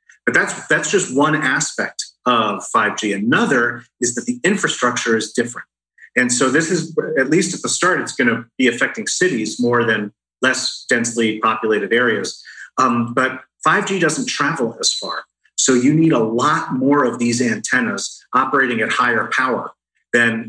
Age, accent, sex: 40-59, American, male